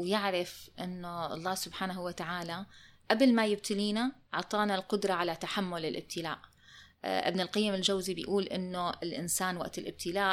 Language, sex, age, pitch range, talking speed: Arabic, female, 20-39, 180-210 Hz, 120 wpm